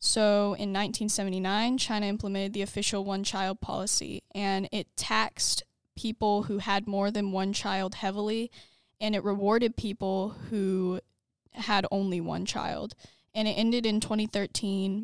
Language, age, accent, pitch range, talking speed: English, 10-29, American, 190-215 Hz, 135 wpm